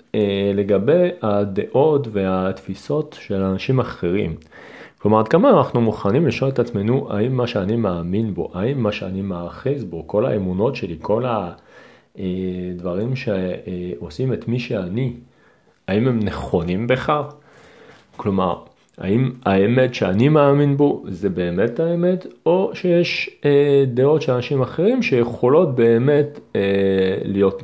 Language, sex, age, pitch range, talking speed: Hebrew, male, 40-59, 95-130 Hz, 115 wpm